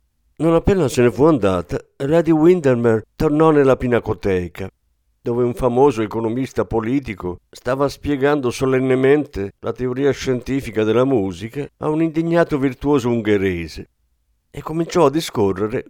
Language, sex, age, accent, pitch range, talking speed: Italian, male, 50-69, native, 95-145 Hz, 125 wpm